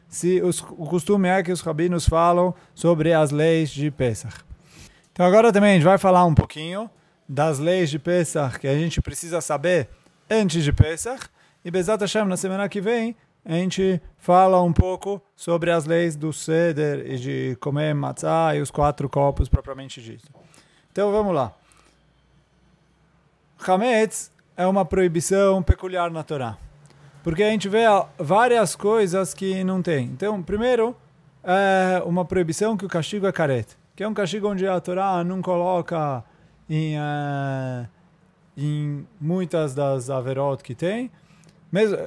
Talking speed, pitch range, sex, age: 155 wpm, 150-190 Hz, male, 30-49